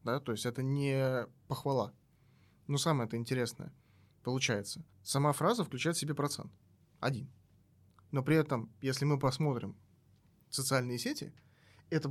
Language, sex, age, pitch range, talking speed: Russian, male, 20-39, 120-150 Hz, 125 wpm